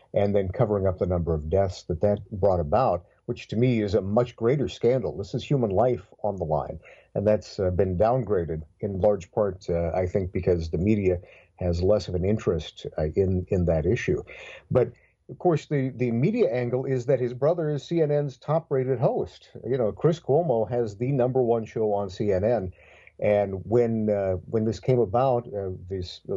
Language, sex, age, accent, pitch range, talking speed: English, male, 50-69, American, 95-120 Hz, 200 wpm